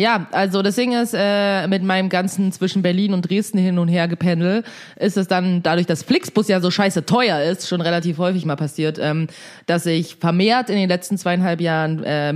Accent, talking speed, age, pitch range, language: German, 210 wpm, 20-39, 170-225 Hz, German